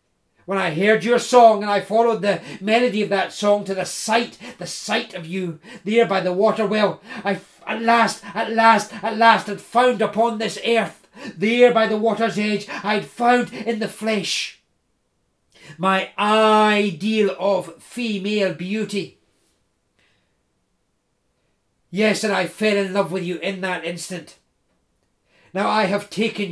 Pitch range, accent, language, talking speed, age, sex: 185-225 Hz, British, English, 155 wpm, 40-59, male